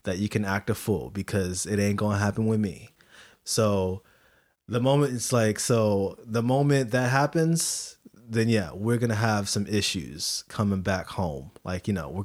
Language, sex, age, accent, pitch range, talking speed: English, male, 20-39, American, 105-130 Hz, 190 wpm